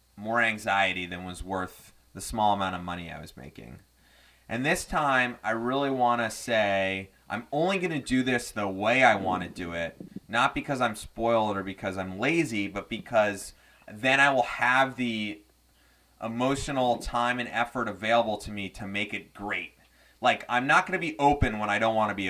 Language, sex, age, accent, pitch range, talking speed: English, male, 30-49, American, 95-125 Hz, 185 wpm